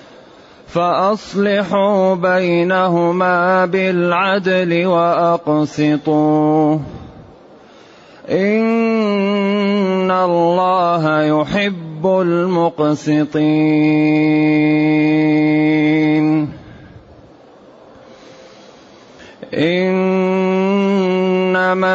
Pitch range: 155-190 Hz